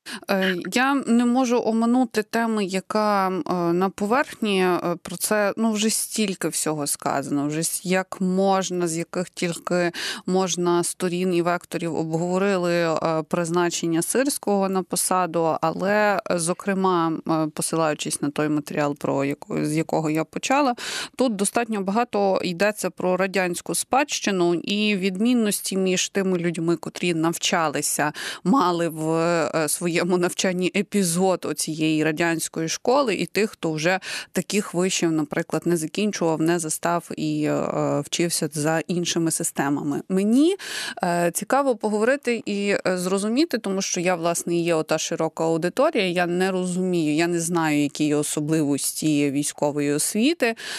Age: 30-49